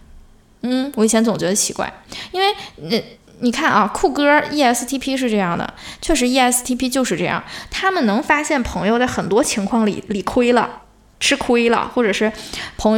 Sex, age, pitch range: female, 10-29, 210-265 Hz